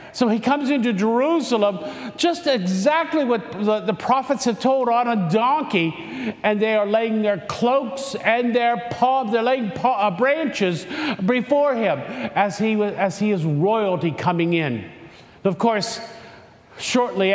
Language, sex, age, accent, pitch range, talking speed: English, male, 50-69, American, 170-230 Hz, 150 wpm